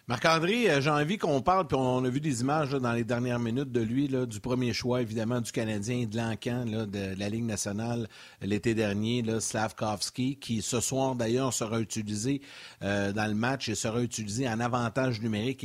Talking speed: 205 wpm